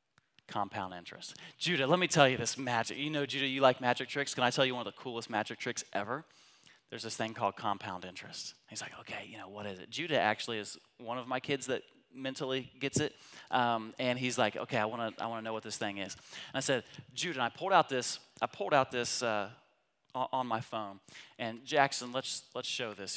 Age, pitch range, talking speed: 30-49, 115-145 Hz, 235 wpm